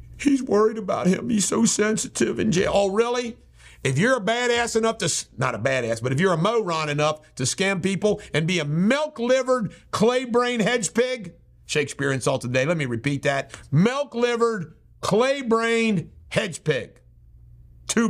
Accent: American